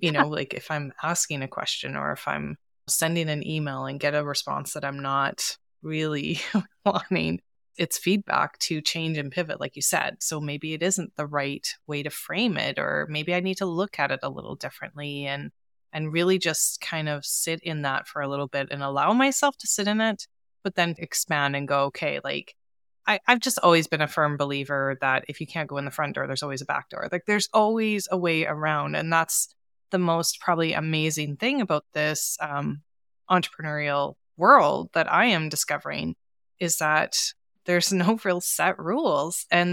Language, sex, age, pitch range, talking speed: English, female, 20-39, 145-180 Hz, 200 wpm